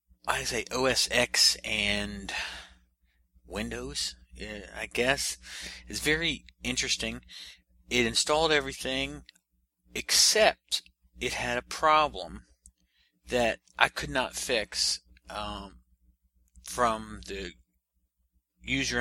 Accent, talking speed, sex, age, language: American, 90 wpm, male, 40-59, English